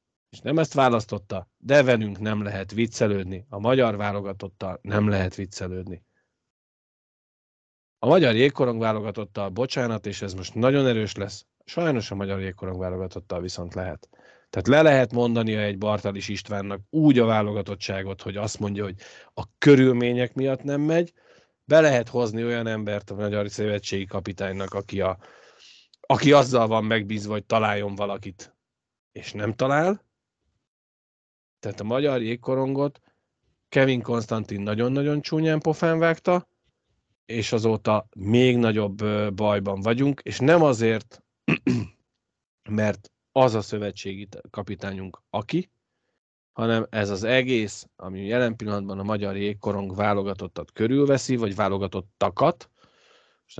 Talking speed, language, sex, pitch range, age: 125 wpm, Hungarian, male, 100-125 Hz, 30-49